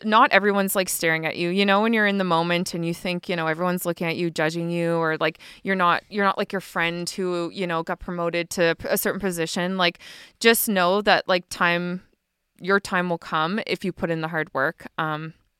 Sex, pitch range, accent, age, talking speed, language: female, 165-195 Hz, American, 20-39, 230 wpm, English